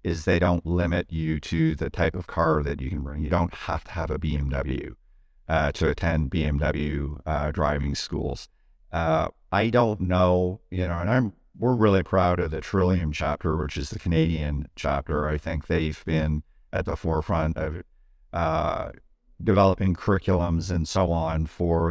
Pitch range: 80-100 Hz